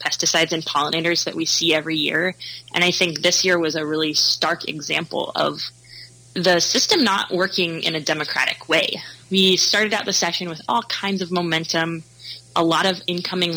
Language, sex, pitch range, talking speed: English, female, 155-185 Hz, 180 wpm